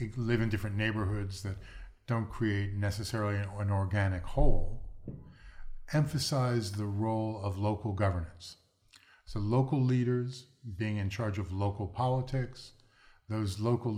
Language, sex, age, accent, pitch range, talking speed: English, male, 50-69, American, 100-120 Hz, 125 wpm